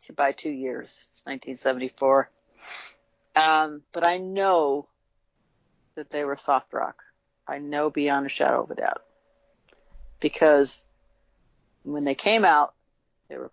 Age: 40-59